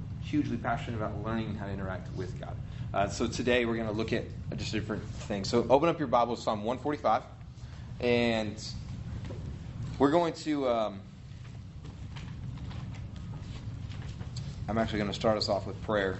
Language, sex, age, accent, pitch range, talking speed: English, male, 30-49, American, 110-125 Hz, 150 wpm